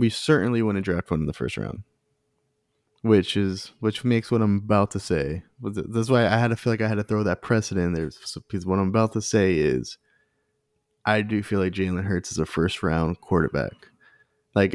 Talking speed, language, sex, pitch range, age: 210 wpm, English, male, 90-115 Hz, 20-39